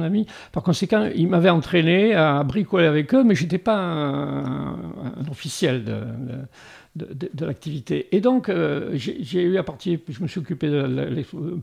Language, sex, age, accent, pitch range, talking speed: French, male, 60-79, French, 145-195 Hz, 180 wpm